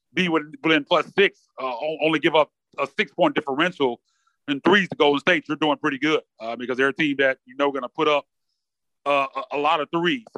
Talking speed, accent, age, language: 225 wpm, American, 30-49, English